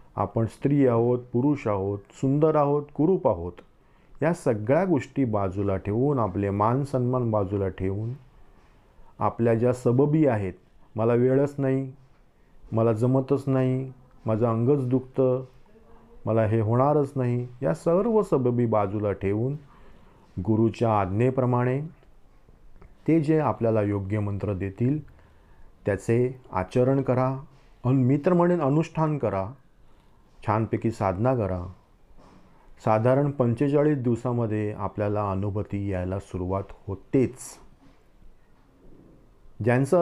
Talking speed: 105 wpm